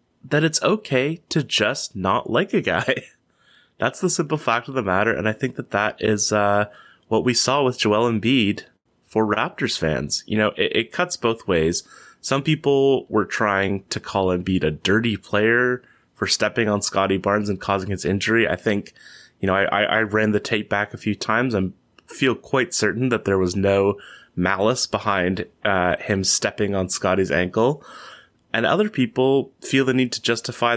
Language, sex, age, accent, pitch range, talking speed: English, male, 20-39, American, 100-125 Hz, 185 wpm